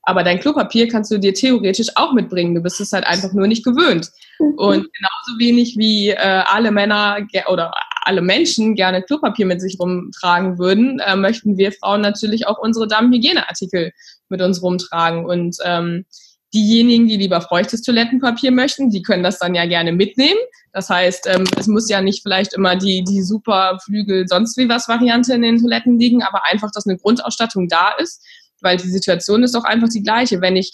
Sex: female